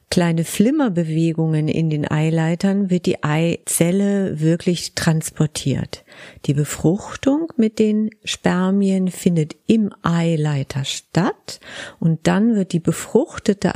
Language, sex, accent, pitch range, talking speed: German, female, German, 155-205 Hz, 105 wpm